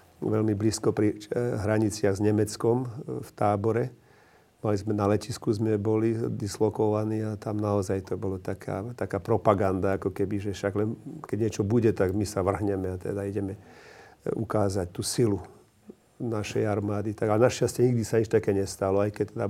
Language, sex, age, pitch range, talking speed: Slovak, male, 50-69, 100-110 Hz, 155 wpm